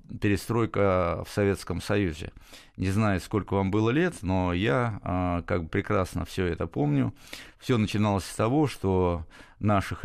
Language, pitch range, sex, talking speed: Russian, 90-110 Hz, male, 150 wpm